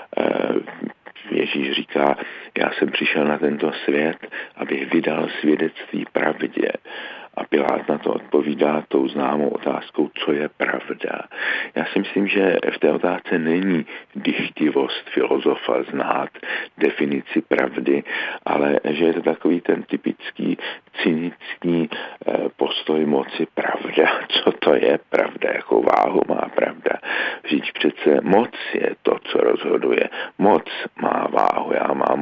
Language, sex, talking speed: Czech, male, 125 wpm